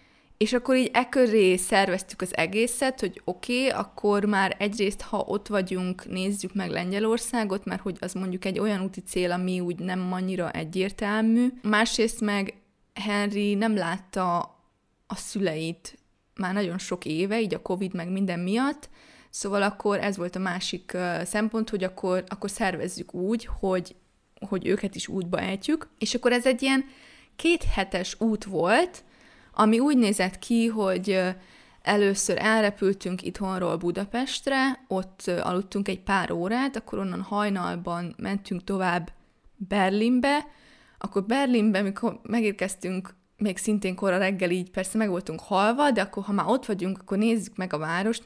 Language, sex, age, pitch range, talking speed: Hungarian, female, 20-39, 185-225 Hz, 145 wpm